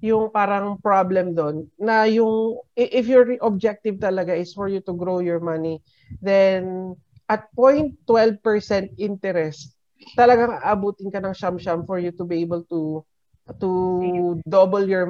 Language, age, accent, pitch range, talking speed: Filipino, 40-59, native, 175-215 Hz, 140 wpm